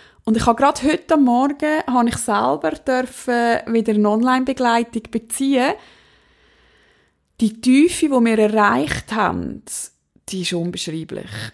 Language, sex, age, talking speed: German, female, 20-39, 125 wpm